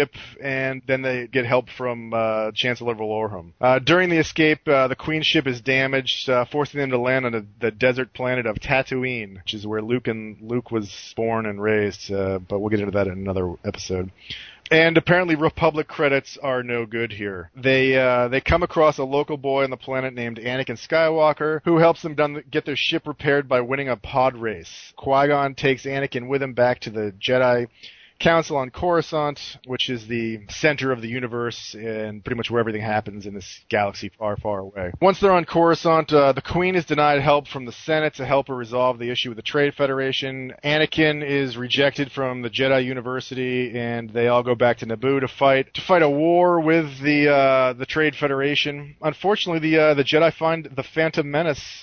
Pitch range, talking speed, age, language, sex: 120-150 Hz, 195 wpm, 40-59, English, male